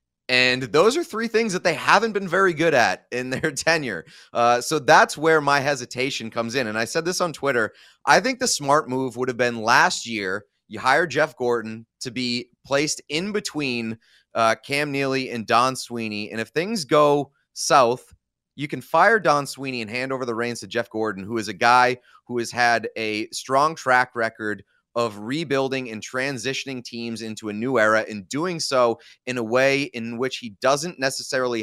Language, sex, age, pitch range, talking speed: English, male, 30-49, 110-140 Hz, 195 wpm